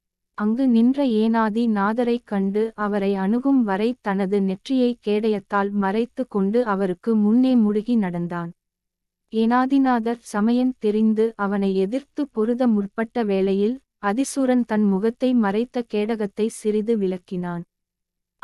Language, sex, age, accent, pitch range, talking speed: Tamil, female, 20-39, native, 200-240 Hz, 100 wpm